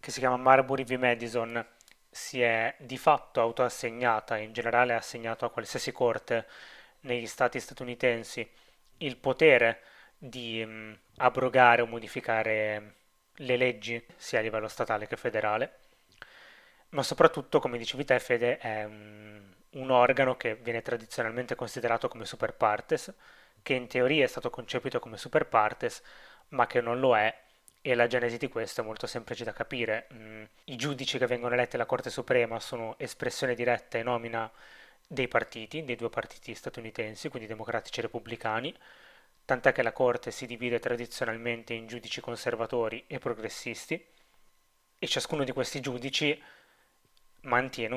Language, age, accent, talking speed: Italian, 20-39, native, 145 wpm